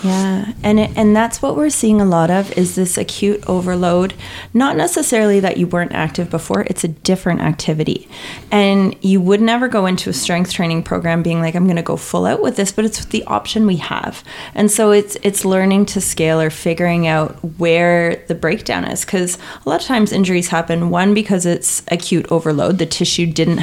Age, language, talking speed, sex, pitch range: 30-49, English, 205 wpm, female, 165-205 Hz